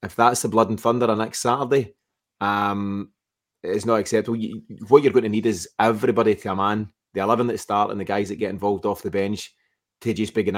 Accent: British